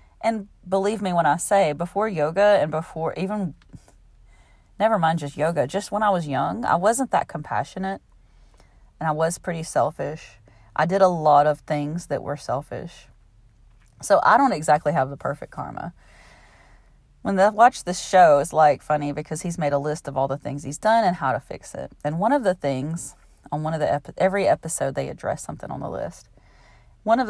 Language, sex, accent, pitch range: English, female, American, 145-200 Hz